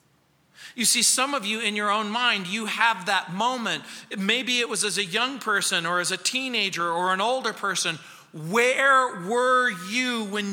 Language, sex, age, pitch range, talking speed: English, male, 40-59, 185-245 Hz, 180 wpm